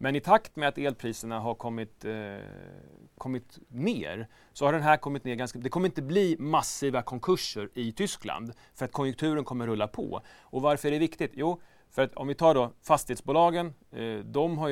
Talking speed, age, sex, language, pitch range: 195 wpm, 30-49, male, Swedish, 115-155 Hz